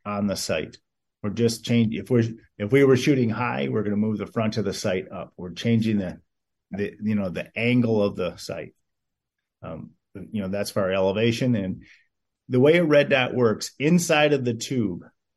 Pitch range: 105-130 Hz